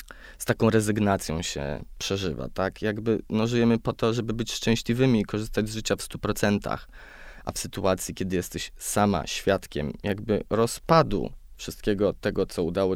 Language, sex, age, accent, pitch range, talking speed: Polish, male, 20-39, native, 85-115 Hz, 155 wpm